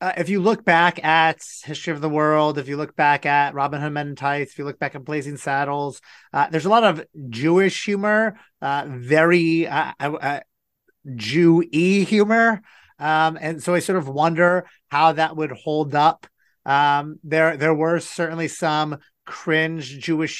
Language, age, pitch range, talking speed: English, 30-49, 150-175 Hz, 175 wpm